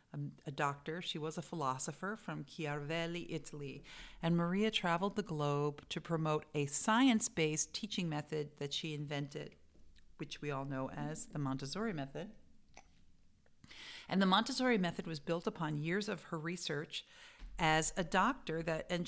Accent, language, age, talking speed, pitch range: American, English, 50-69, 150 wpm, 145-185 Hz